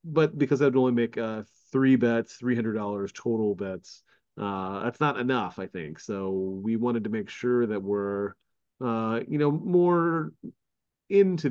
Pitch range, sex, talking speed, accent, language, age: 100-120 Hz, male, 155 wpm, American, English, 30-49